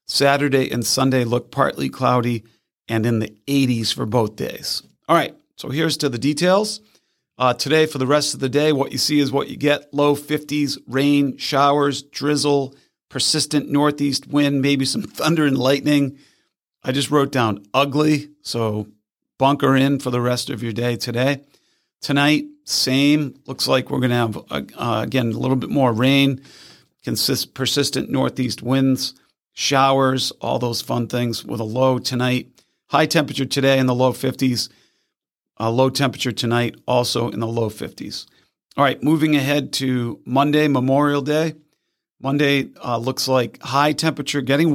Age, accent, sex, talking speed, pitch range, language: 40-59, American, male, 160 wpm, 120-145 Hz, English